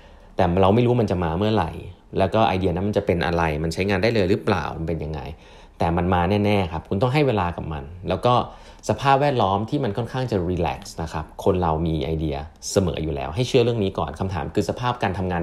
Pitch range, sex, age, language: 80-105 Hz, male, 30-49, Thai